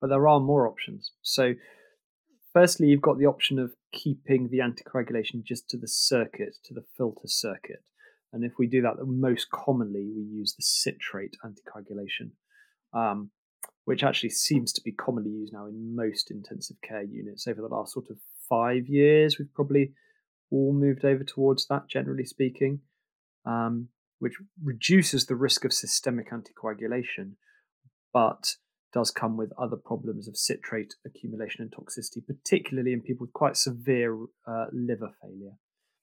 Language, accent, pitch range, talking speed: English, British, 120-145 Hz, 155 wpm